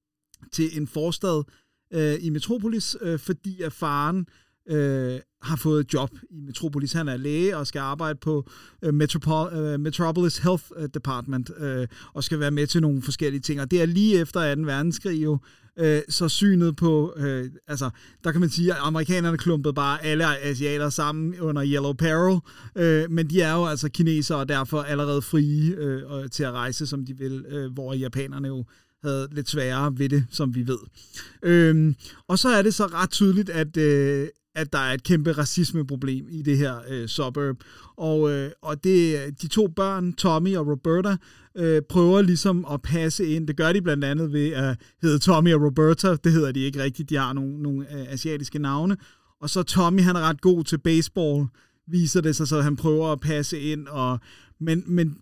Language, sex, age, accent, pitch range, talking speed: Danish, male, 30-49, native, 140-170 Hz, 190 wpm